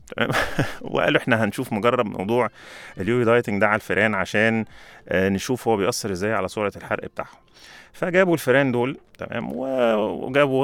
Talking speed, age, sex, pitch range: 140 wpm, 30-49, male, 95-120 Hz